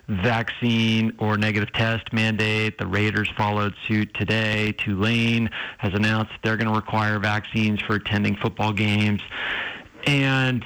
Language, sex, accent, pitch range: English, male, American, 105-120 Hz